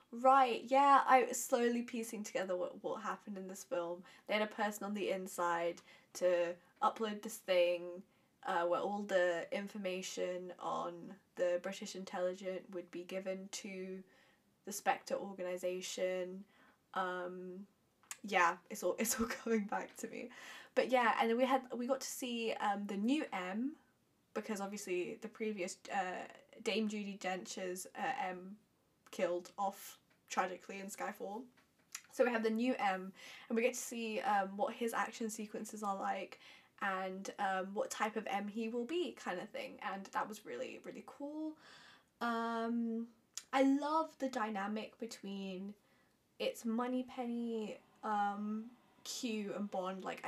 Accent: British